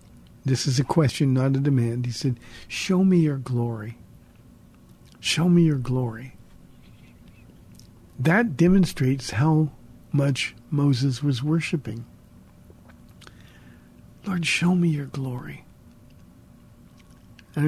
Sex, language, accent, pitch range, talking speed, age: male, English, American, 125-155 Hz, 100 wpm, 50-69